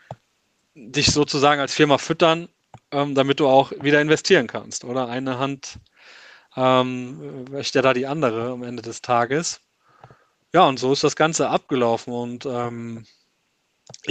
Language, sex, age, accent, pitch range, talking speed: German, male, 30-49, German, 120-140 Hz, 135 wpm